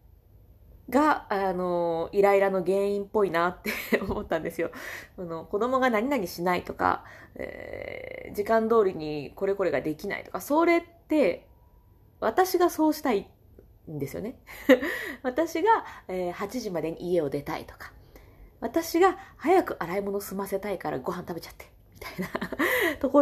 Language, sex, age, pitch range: Japanese, female, 20-39, 170-270 Hz